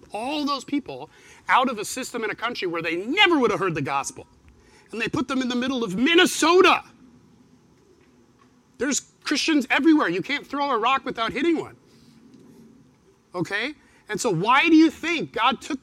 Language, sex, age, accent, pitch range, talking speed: English, male, 30-49, American, 230-315 Hz, 180 wpm